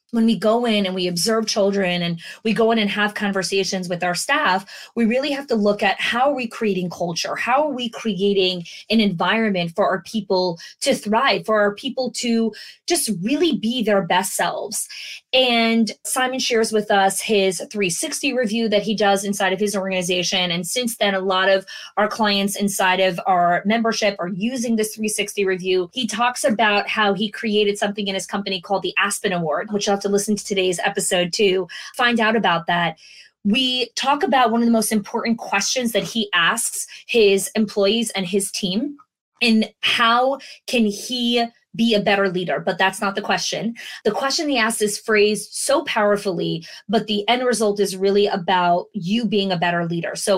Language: English